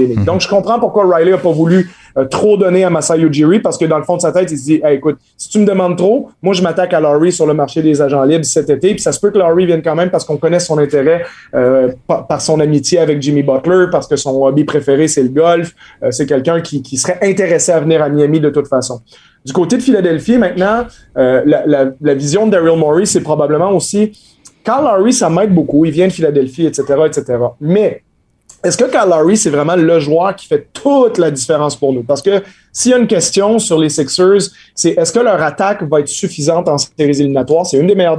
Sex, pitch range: male, 145-185 Hz